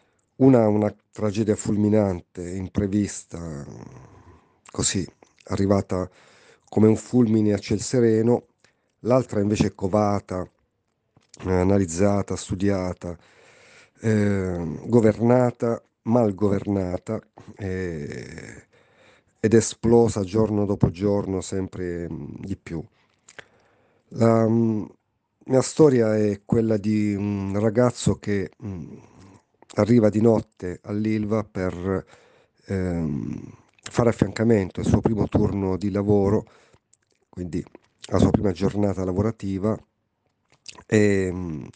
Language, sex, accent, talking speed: Italian, male, native, 95 wpm